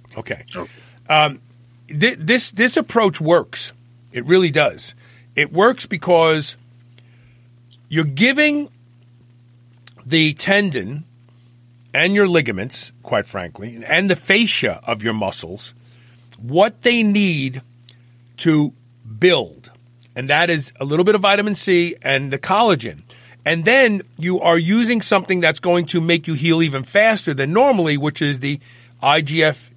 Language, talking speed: English, 130 wpm